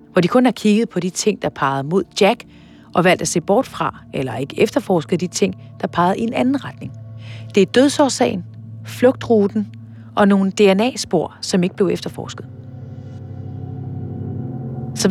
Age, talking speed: 40-59, 165 wpm